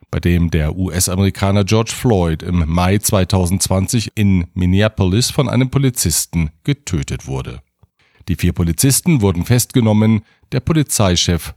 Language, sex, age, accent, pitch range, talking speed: German, male, 50-69, German, 95-125 Hz, 120 wpm